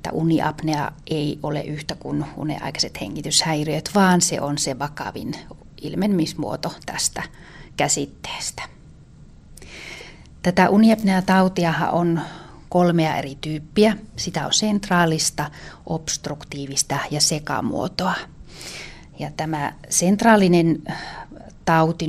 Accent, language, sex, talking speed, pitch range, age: native, Finnish, female, 85 wpm, 150-170 Hz, 30-49